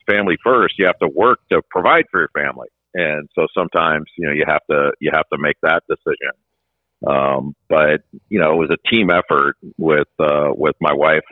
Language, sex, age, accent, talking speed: English, male, 50-69, American, 205 wpm